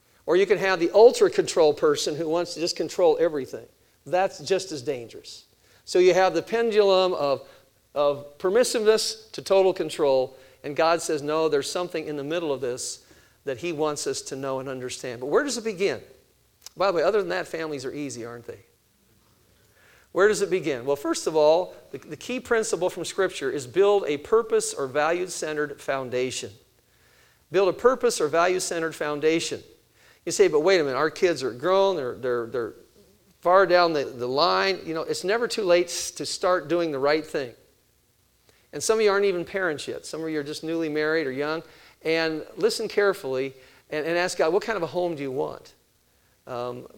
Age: 50-69